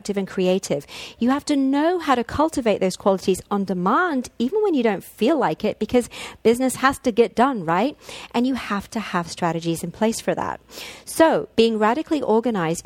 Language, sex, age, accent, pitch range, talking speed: English, female, 40-59, British, 180-255 Hz, 190 wpm